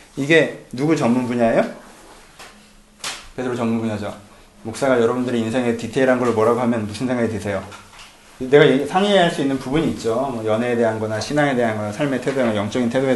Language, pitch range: Korean, 115-165 Hz